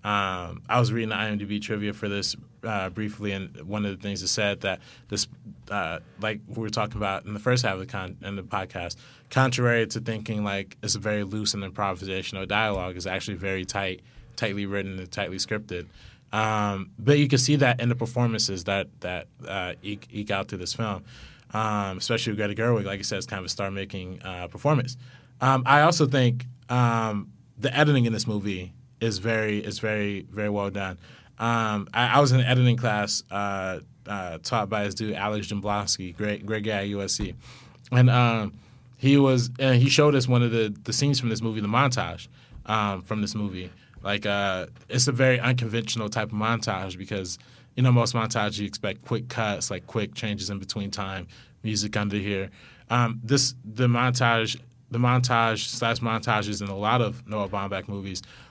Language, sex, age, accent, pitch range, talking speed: English, male, 20-39, American, 100-120 Hz, 195 wpm